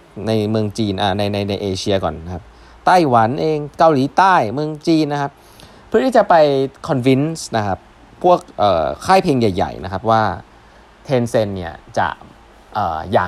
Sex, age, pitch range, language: male, 20-39, 95-140 Hz, Thai